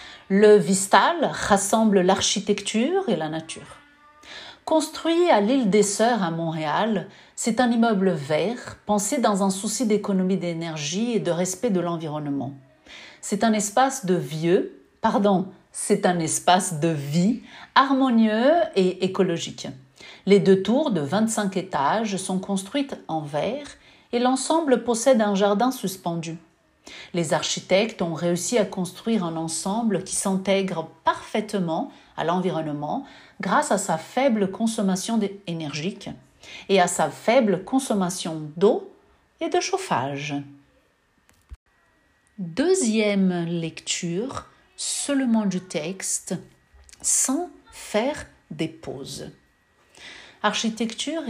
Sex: female